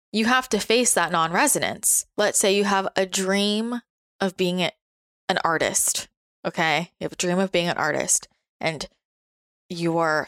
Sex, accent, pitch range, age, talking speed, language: female, American, 175-210 Hz, 20-39, 160 wpm, English